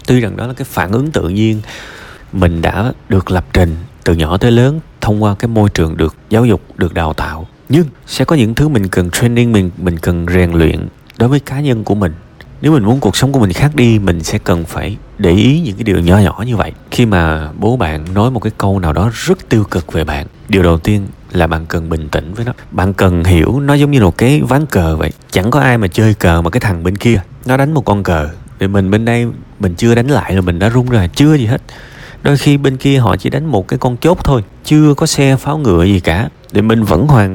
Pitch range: 90-130 Hz